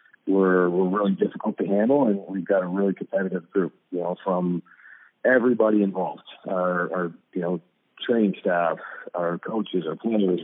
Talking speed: 160 wpm